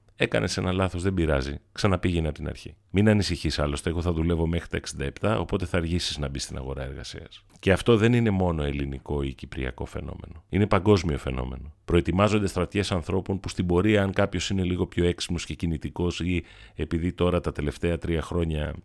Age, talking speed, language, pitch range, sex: 40-59, 190 wpm, Greek, 75-95 Hz, male